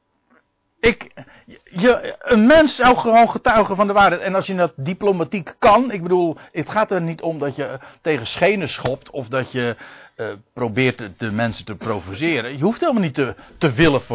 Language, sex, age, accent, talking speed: Dutch, male, 60-79, Dutch, 180 wpm